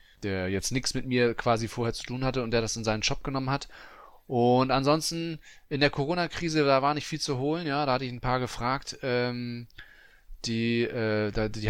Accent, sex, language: German, male, German